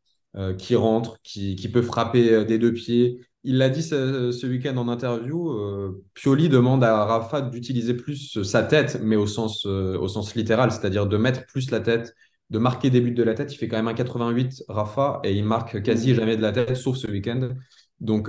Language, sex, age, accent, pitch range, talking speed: French, male, 20-39, French, 110-125 Hz, 220 wpm